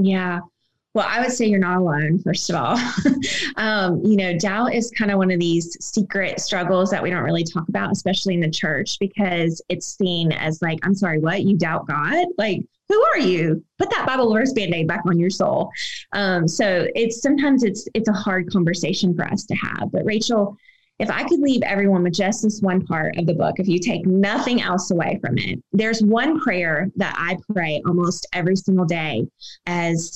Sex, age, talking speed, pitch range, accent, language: female, 20-39, 205 wpm, 175-215 Hz, American, English